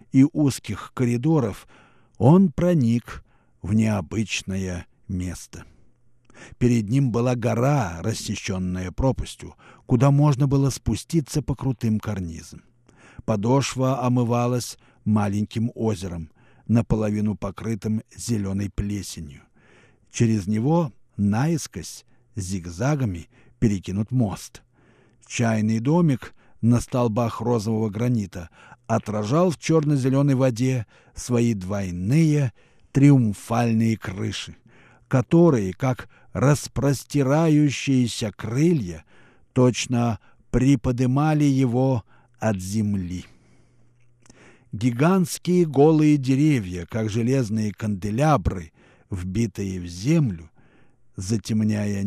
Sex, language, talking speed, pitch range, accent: male, Russian, 80 wpm, 105-130 Hz, native